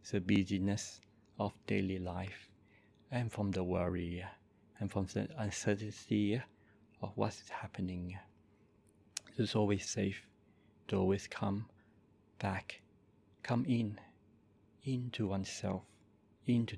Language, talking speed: English, 100 wpm